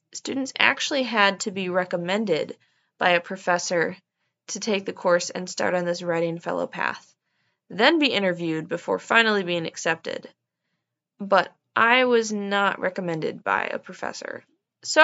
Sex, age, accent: female, 20-39, American